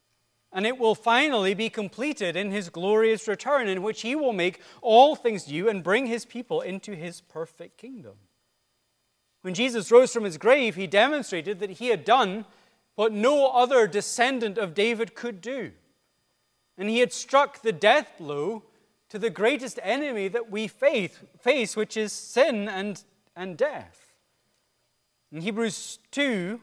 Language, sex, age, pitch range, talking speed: English, male, 30-49, 185-245 Hz, 155 wpm